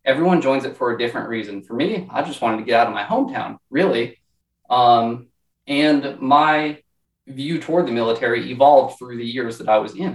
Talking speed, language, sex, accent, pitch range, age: 200 wpm, English, male, American, 115-145 Hz, 20-39